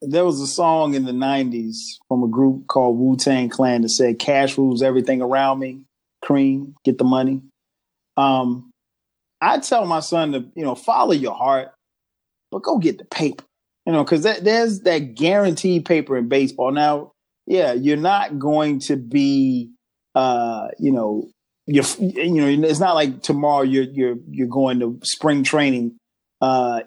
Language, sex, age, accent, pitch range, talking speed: English, male, 30-49, American, 130-155 Hz, 170 wpm